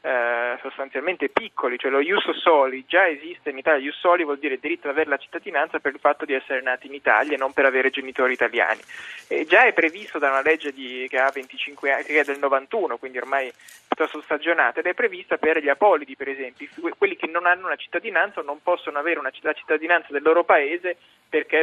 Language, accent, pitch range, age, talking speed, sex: Italian, native, 135-175 Hz, 20-39, 230 wpm, male